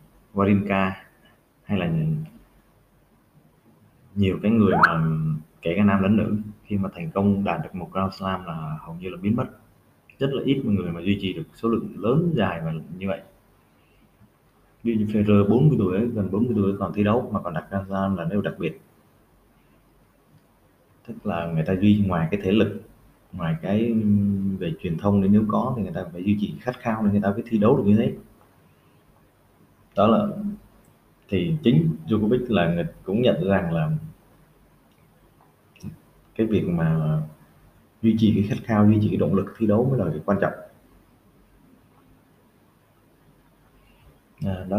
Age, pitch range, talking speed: 20-39, 95-115 Hz, 170 wpm